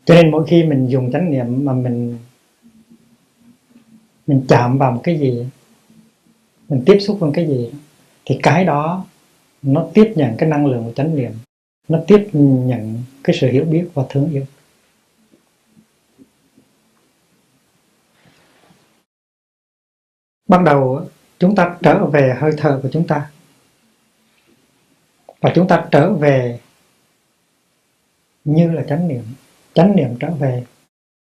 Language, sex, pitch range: Vietnamese, male, 130-170 Hz